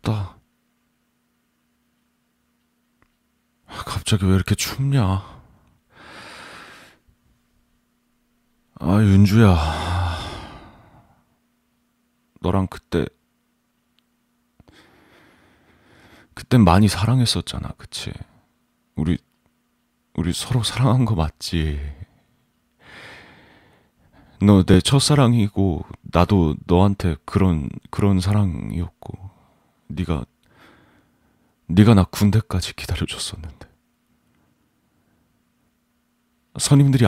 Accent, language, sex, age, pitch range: native, Korean, male, 30-49, 85-105 Hz